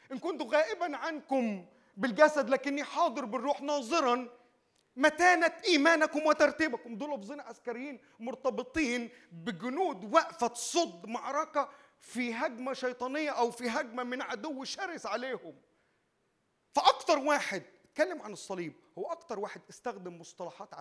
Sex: male